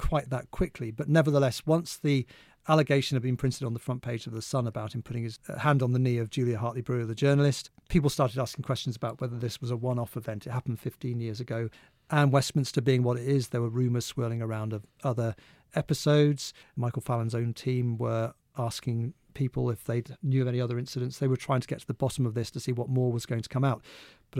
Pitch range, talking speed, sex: 120-140 Hz, 235 wpm, male